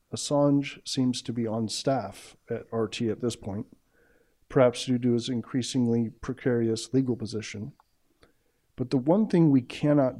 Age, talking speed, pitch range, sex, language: 50-69, 145 wpm, 120-140 Hz, male, English